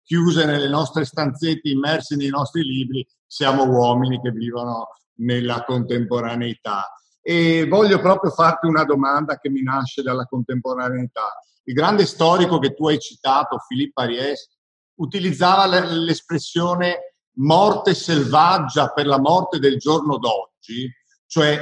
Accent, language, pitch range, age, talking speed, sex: native, Italian, 125-165 Hz, 50-69, 125 wpm, male